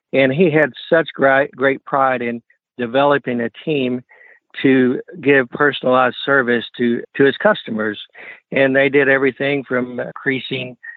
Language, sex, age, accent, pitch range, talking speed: English, male, 60-79, American, 120-135 Hz, 135 wpm